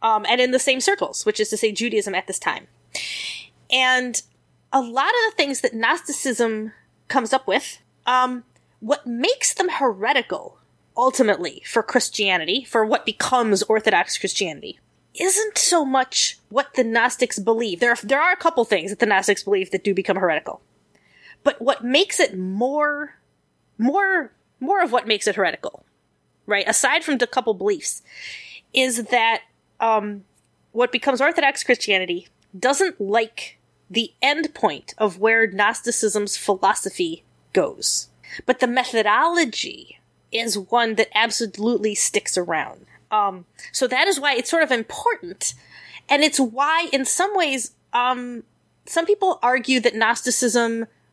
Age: 20-39